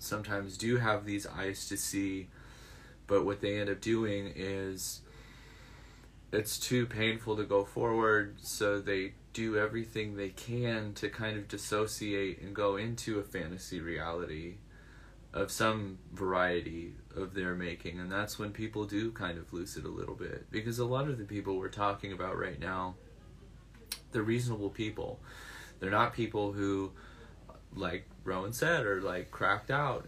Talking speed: 160 wpm